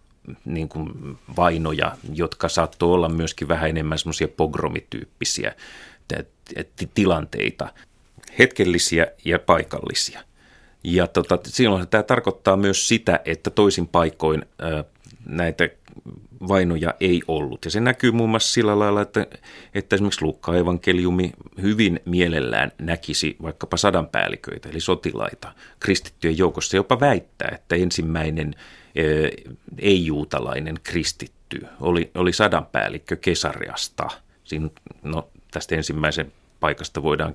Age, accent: 30-49, native